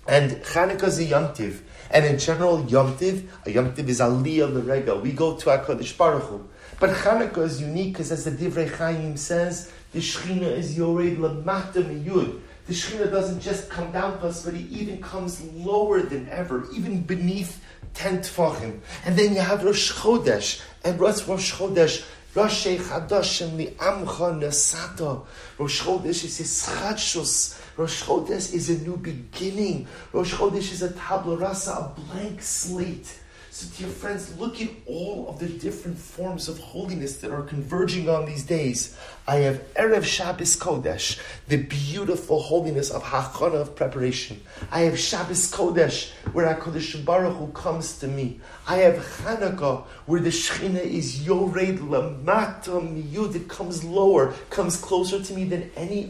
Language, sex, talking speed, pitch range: English, male, 155 wpm, 155-190 Hz